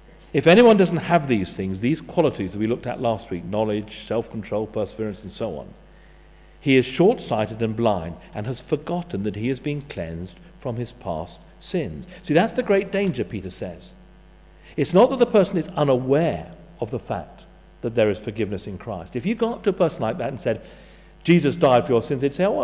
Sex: male